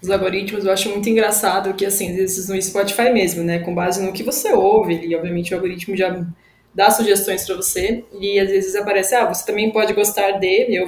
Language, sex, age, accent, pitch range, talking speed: Portuguese, female, 20-39, Brazilian, 190-250 Hz, 220 wpm